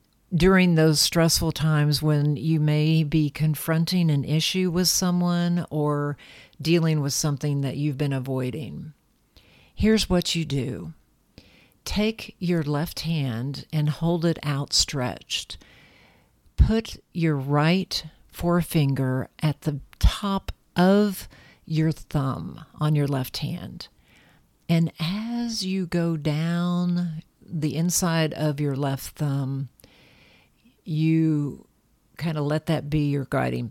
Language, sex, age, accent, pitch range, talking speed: English, female, 50-69, American, 145-170 Hz, 120 wpm